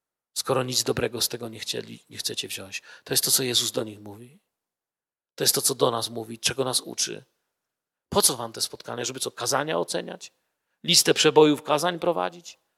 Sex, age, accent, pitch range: male, 40-59, native, 140-180 Hz